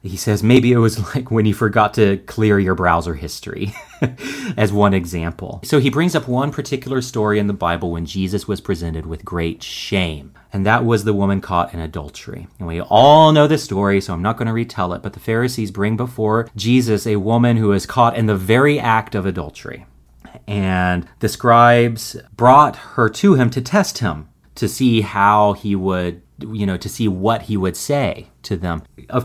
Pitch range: 90-115 Hz